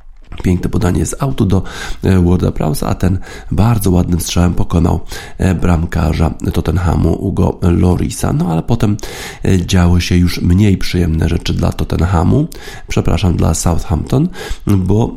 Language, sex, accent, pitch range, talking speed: Polish, male, native, 85-100 Hz, 125 wpm